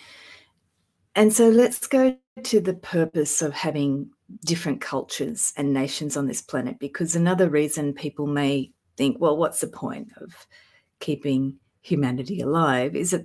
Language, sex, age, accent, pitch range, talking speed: English, female, 40-59, Australian, 130-170 Hz, 145 wpm